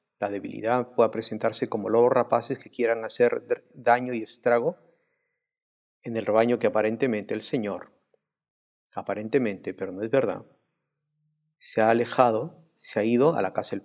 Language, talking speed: Spanish, 150 wpm